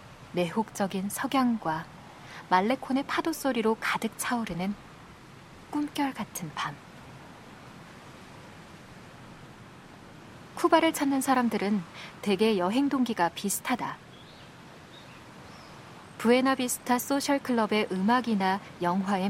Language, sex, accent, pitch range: Korean, female, native, 190-260 Hz